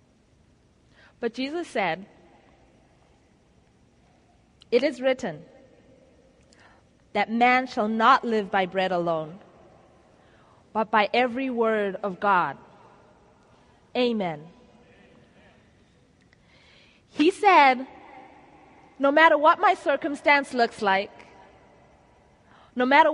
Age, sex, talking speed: 20-39, female, 85 wpm